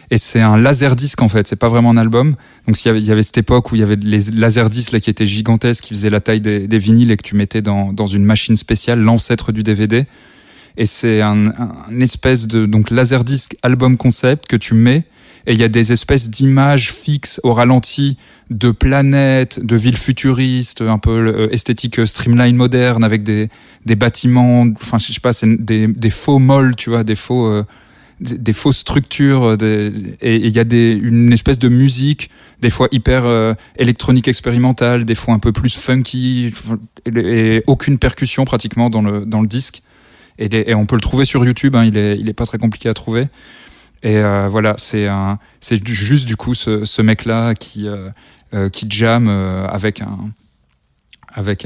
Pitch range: 110-125 Hz